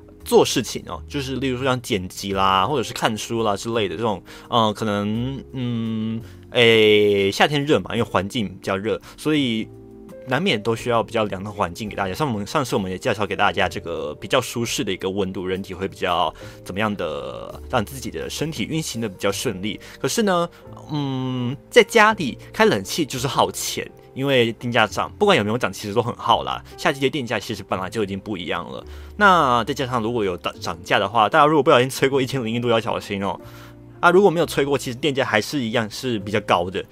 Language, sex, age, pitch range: Chinese, male, 20-39, 100-130 Hz